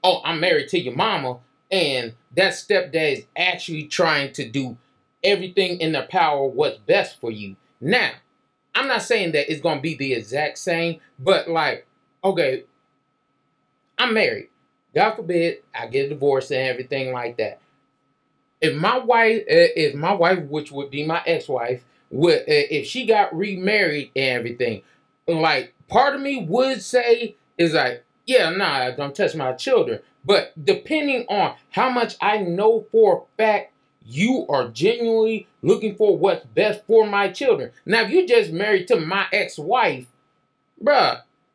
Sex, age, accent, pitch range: male, 30-49, American, 165-255 Hz